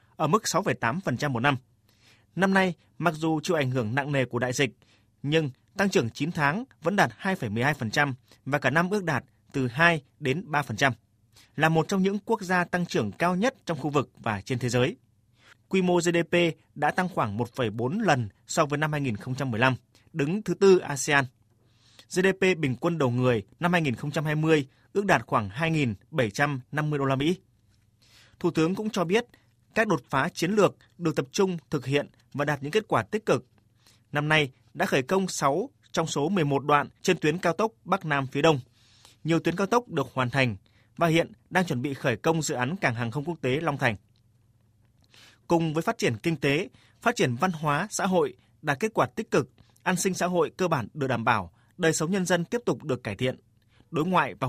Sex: male